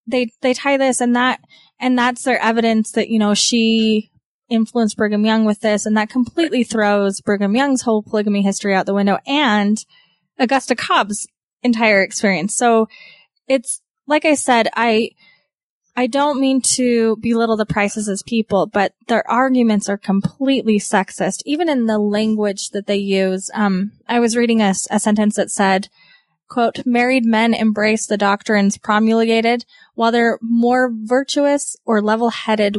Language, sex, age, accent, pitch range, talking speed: English, female, 10-29, American, 205-245 Hz, 155 wpm